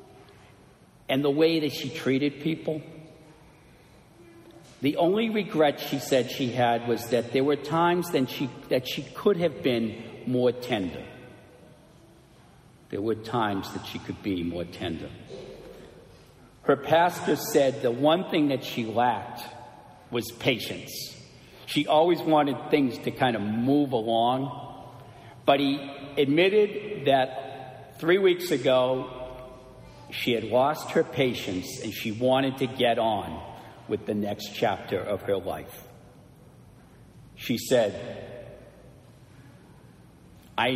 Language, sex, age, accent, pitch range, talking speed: English, male, 50-69, American, 115-140 Hz, 125 wpm